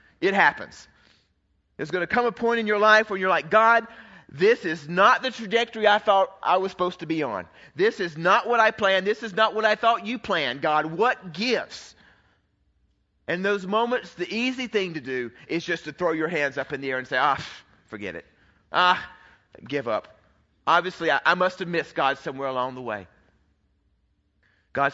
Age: 40-59